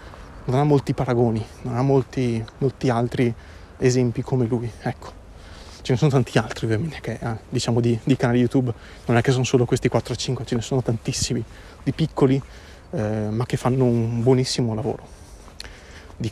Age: 30-49